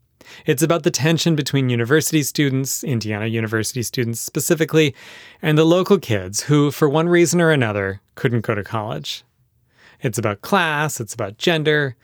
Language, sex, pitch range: English, male, 115-155 Hz